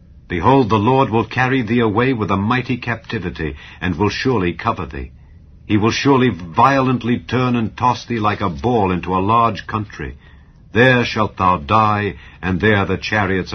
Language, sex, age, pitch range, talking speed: English, male, 70-89, 80-110 Hz, 175 wpm